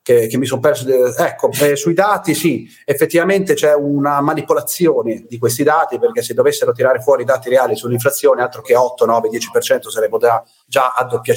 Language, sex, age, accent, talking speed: Italian, male, 30-49, native, 195 wpm